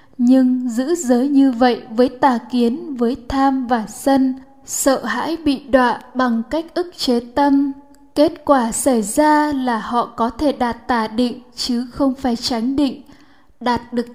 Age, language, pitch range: 10-29, Vietnamese, 240-275 Hz